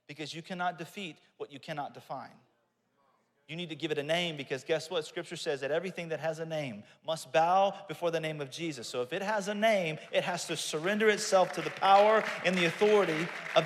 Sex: male